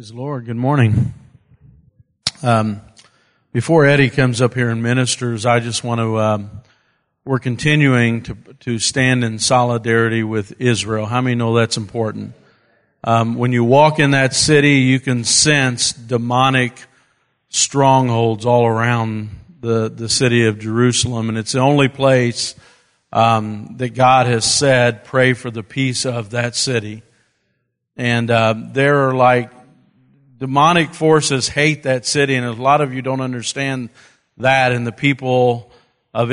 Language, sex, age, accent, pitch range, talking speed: English, male, 50-69, American, 115-135 Hz, 145 wpm